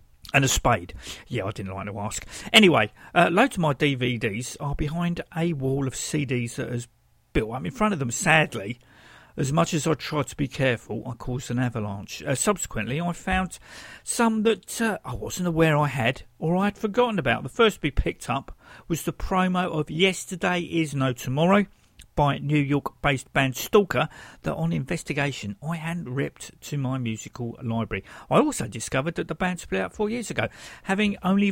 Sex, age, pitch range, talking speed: male, 50-69, 120-180 Hz, 190 wpm